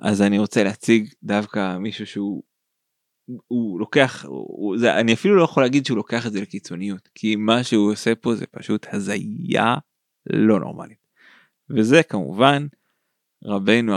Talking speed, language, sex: 145 wpm, Hebrew, male